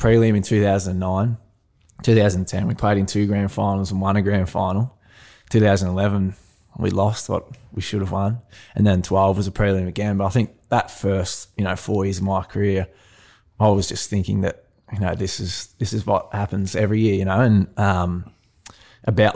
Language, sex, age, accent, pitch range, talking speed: English, male, 20-39, Australian, 95-105 Hz, 215 wpm